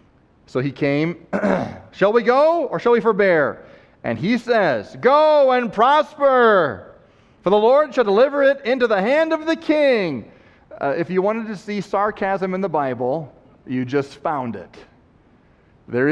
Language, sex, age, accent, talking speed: English, male, 40-59, American, 160 wpm